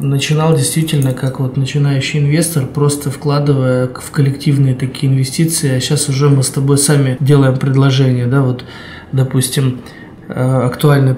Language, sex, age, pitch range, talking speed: Russian, male, 20-39, 130-150 Hz, 120 wpm